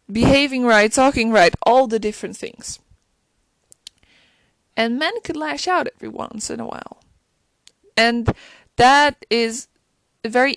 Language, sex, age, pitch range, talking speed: English, female, 20-39, 215-270 Hz, 125 wpm